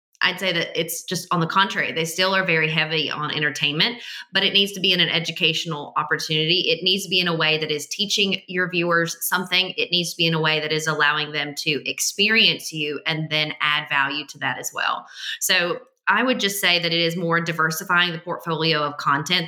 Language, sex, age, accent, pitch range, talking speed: English, female, 20-39, American, 160-185 Hz, 225 wpm